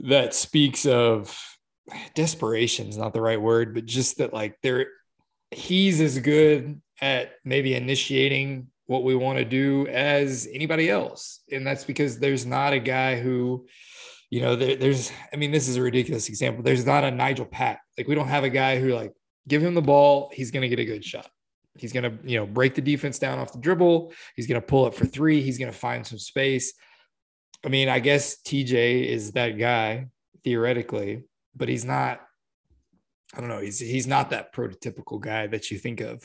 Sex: male